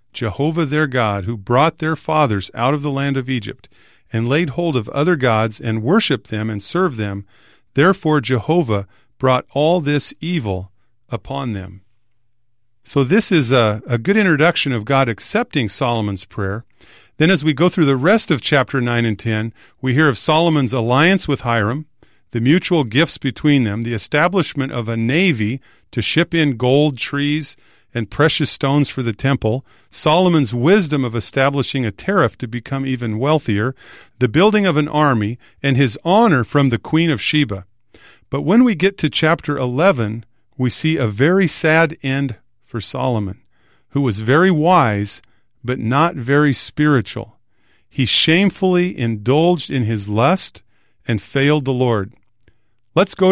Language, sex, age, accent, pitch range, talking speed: English, male, 40-59, American, 115-155 Hz, 160 wpm